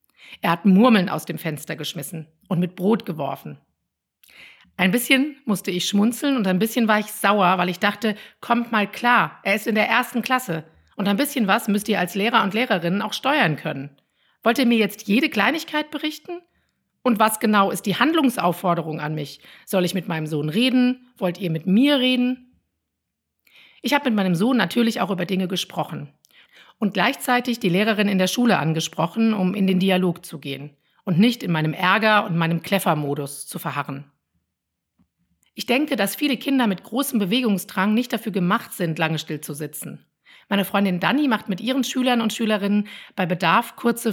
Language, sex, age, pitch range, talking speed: German, female, 50-69, 175-235 Hz, 185 wpm